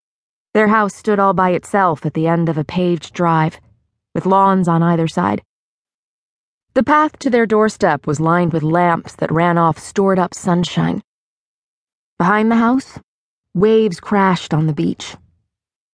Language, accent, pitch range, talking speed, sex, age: English, American, 160-210 Hz, 155 wpm, female, 20-39